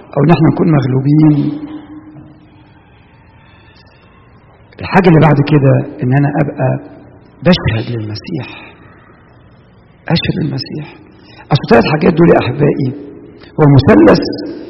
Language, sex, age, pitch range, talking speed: English, male, 60-79, 150-240 Hz, 100 wpm